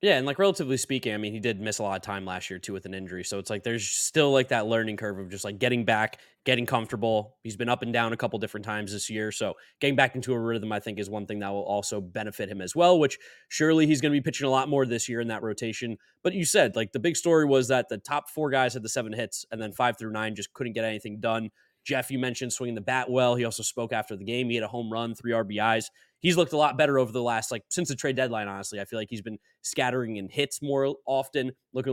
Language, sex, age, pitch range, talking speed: English, male, 20-39, 110-130 Hz, 285 wpm